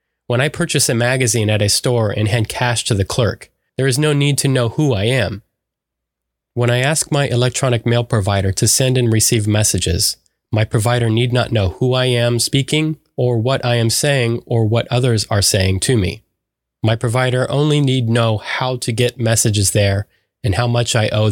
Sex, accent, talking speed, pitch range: male, American, 200 wpm, 105-125 Hz